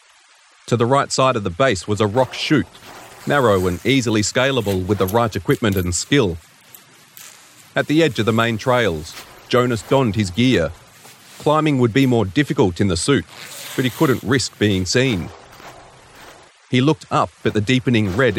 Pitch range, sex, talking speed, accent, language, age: 100-130 Hz, male, 175 wpm, Australian, English, 40-59